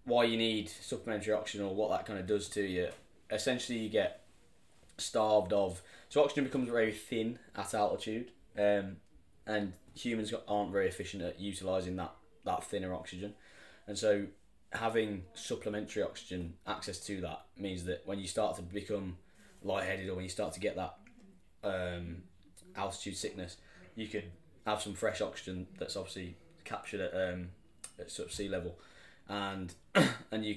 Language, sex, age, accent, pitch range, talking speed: English, male, 10-29, British, 90-105 Hz, 160 wpm